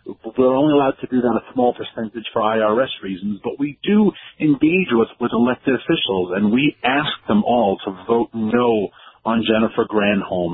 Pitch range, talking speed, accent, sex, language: 110-145 Hz, 175 wpm, American, male, English